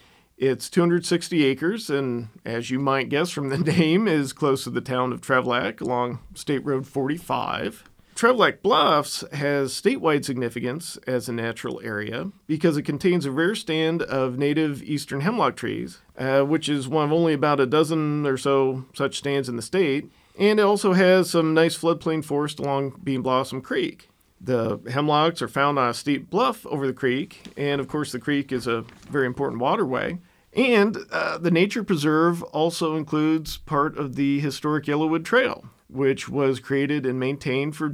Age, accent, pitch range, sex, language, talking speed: 40-59, American, 125-150 Hz, male, English, 175 wpm